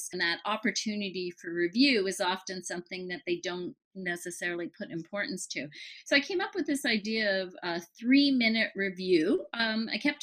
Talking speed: 170 wpm